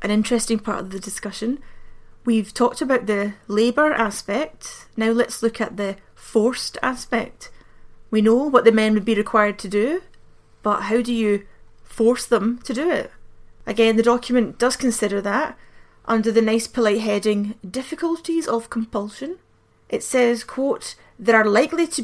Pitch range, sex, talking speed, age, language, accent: 215-250 Hz, female, 160 wpm, 30-49, English, British